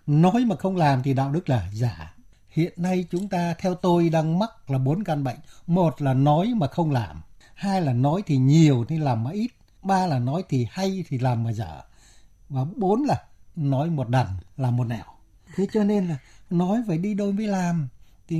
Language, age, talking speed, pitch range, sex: Vietnamese, 60-79, 210 wpm, 130-185 Hz, male